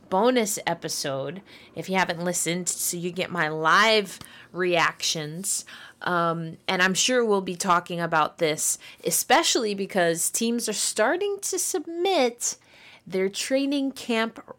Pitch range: 170-225 Hz